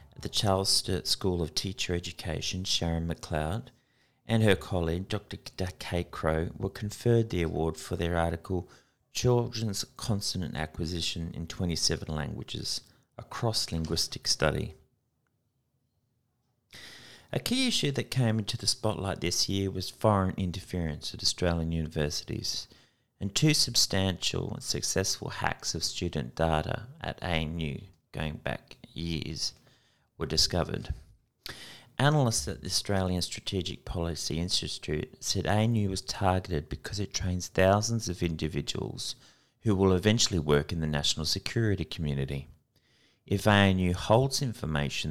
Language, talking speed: English, 125 wpm